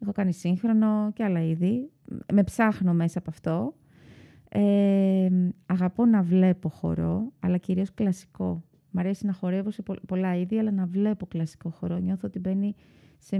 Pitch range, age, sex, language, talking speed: 170-210 Hz, 30-49, female, Greek, 160 wpm